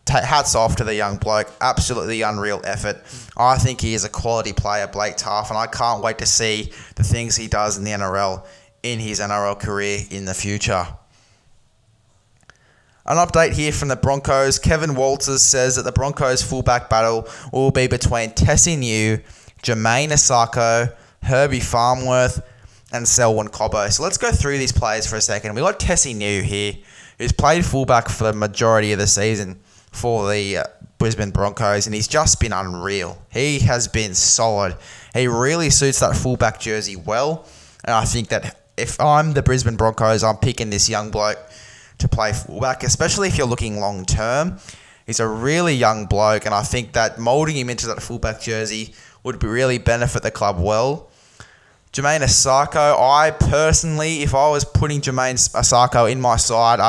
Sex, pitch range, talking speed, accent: male, 105-130 Hz, 175 wpm, Australian